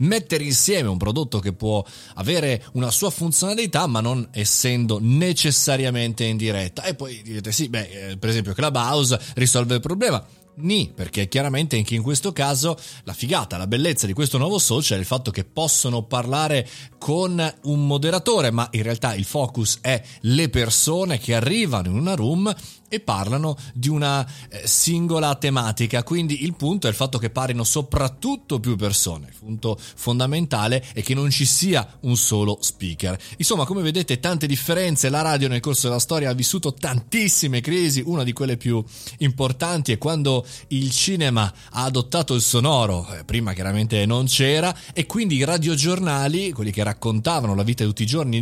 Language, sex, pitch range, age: Italian, male, 115-155 Hz, 30-49